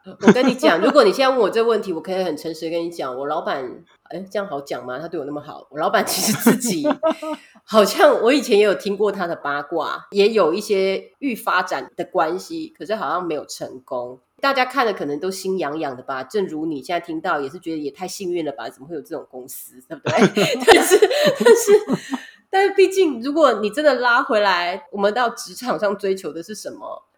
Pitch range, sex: 165-255 Hz, female